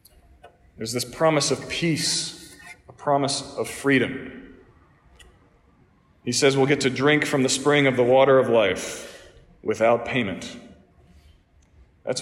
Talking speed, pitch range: 130 wpm, 130-160 Hz